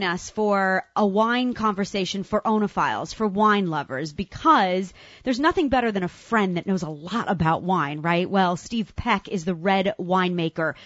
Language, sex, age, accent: English, female, 30-49, American